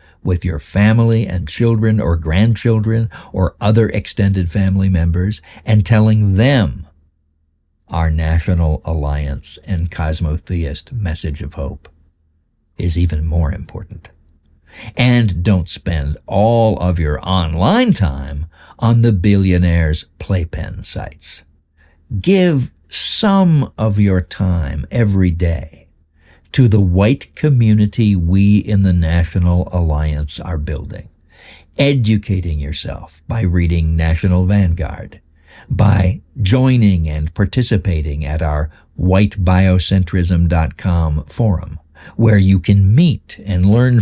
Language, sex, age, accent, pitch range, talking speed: English, male, 60-79, American, 80-105 Hz, 105 wpm